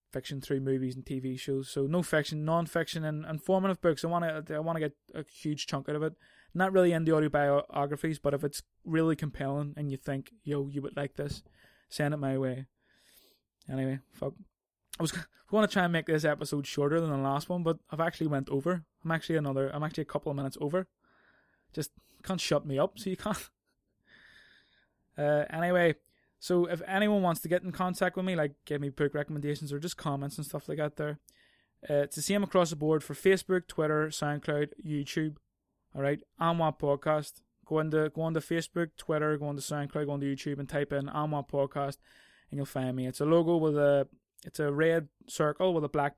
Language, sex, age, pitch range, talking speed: English, male, 20-39, 145-165 Hz, 210 wpm